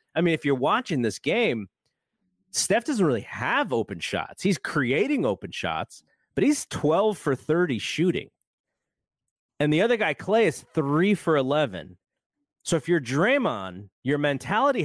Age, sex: 30-49, male